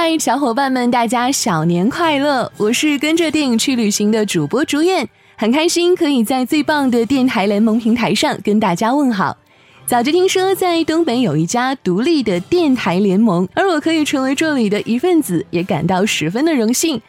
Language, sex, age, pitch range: Chinese, female, 20-39, 210-315 Hz